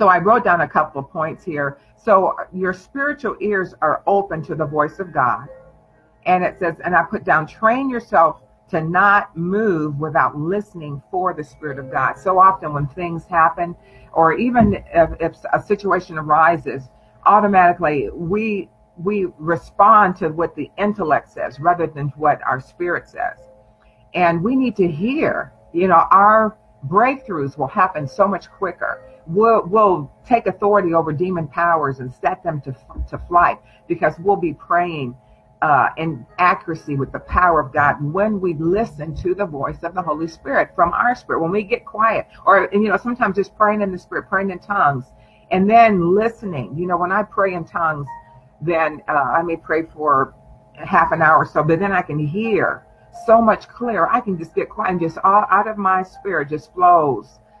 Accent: American